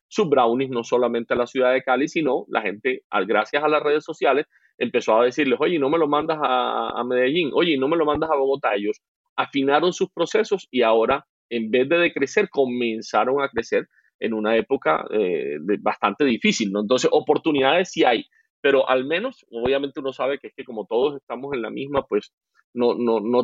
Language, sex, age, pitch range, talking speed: Spanish, male, 30-49, 120-165 Hz, 200 wpm